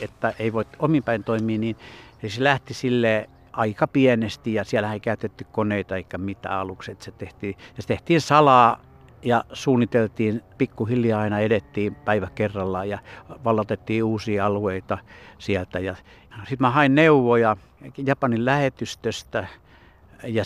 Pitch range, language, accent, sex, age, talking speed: 105-130 Hz, Finnish, native, male, 60-79, 125 wpm